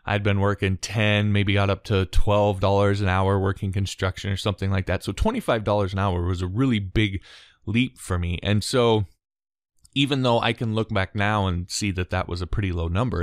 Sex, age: male, 20-39